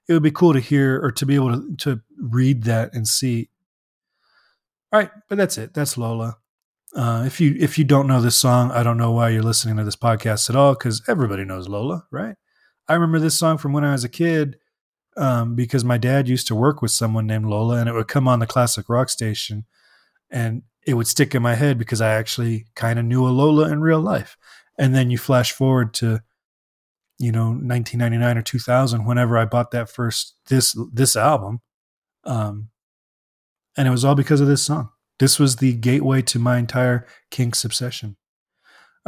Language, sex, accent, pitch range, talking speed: English, male, American, 115-140 Hz, 210 wpm